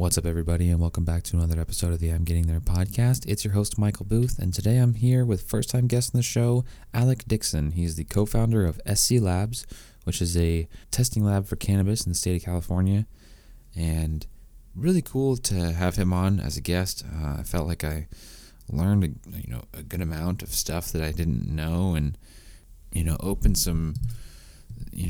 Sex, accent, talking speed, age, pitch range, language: male, American, 205 wpm, 20-39, 80-105 Hz, English